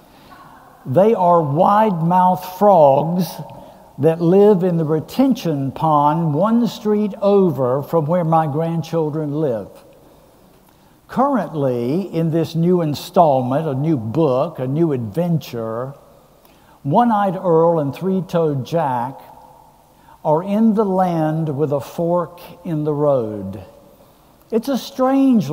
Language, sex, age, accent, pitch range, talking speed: English, male, 60-79, American, 145-195 Hz, 115 wpm